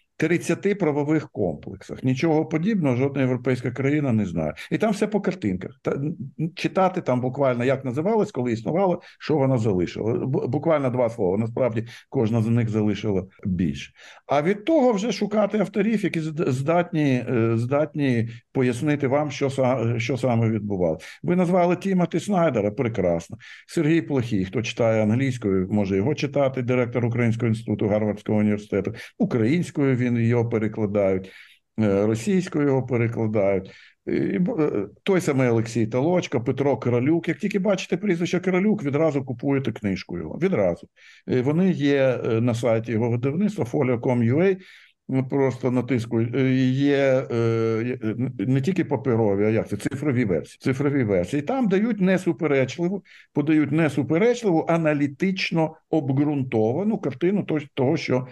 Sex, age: male, 60-79